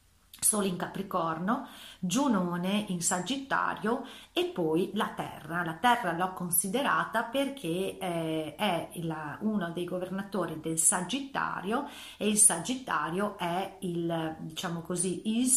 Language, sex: Italian, female